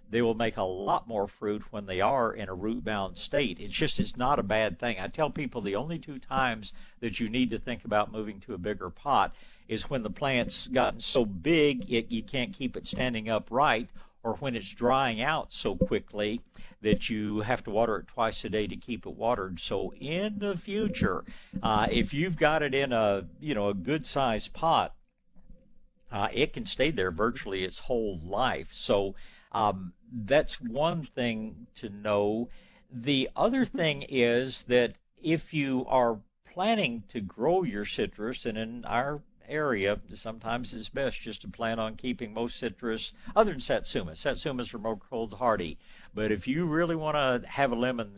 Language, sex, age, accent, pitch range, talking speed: English, male, 60-79, American, 105-140 Hz, 185 wpm